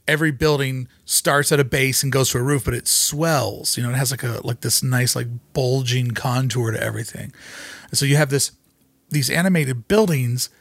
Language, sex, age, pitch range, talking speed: English, male, 40-59, 120-145 Hz, 200 wpm